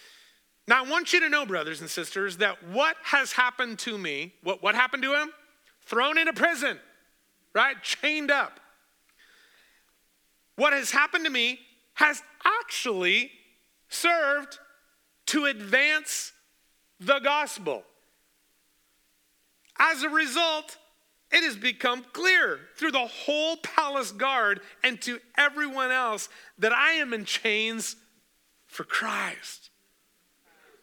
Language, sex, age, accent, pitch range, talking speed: English, male, 40-59, American, 215-300 Hz, 120 wpm